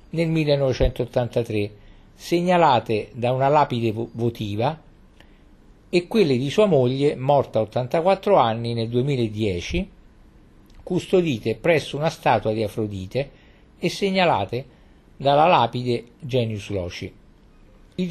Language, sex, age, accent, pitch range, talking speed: Italian, male, 50-69, native, 110-155 Hz, 105 wpm